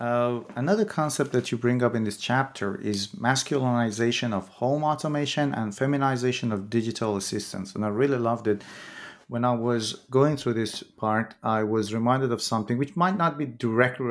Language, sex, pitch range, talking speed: English, male, 105-125 Hz, 180 wpm